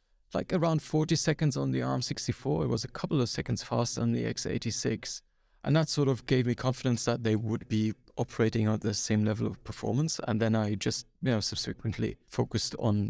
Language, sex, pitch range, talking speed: English, male, 105-120 Hz, 205 wpm